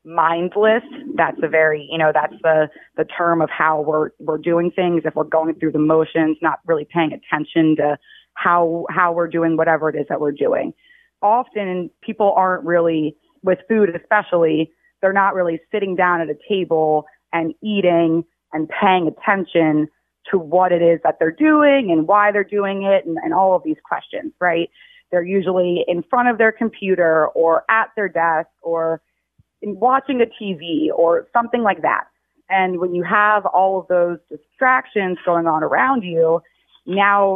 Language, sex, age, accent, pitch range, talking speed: English, female, 30-49, American, 165-200 Hz, 175 wpm